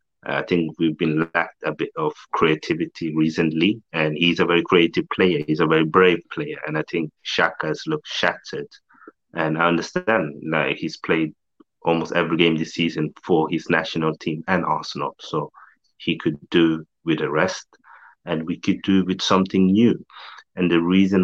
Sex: male